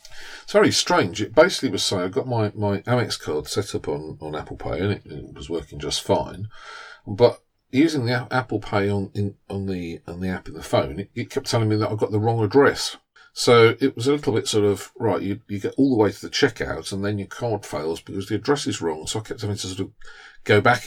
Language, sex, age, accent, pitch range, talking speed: English, male, 40-59, British, 95-120 Hz, 255 wpm